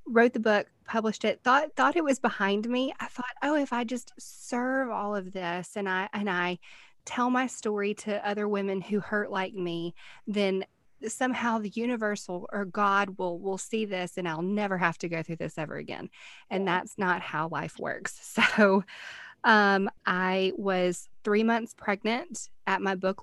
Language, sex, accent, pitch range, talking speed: English, female, American, 185-220 Hz, 185 wpm